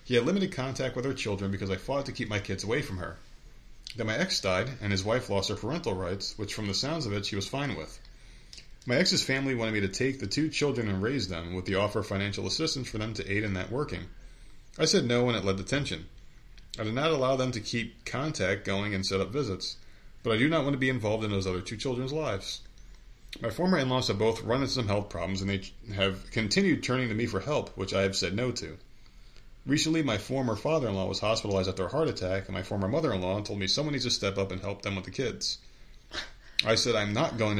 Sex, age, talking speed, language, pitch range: male, 30-49, 250 wpm, English, 100-130 Hz